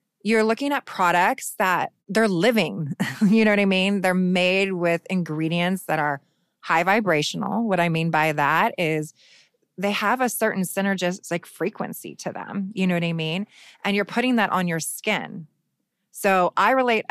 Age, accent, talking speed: 20-39, American, 170 wpm